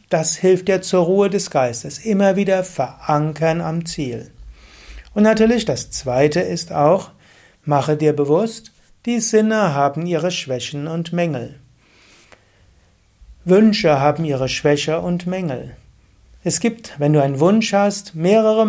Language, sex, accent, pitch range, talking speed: German, male, German, 135-190 Hz, 140 wpm